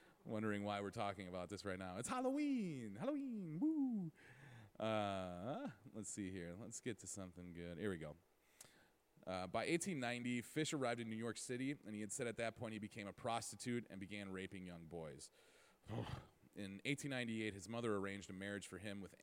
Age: 30-49